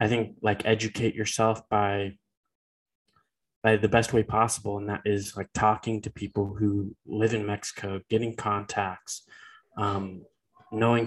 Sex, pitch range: male, 100-120 Hz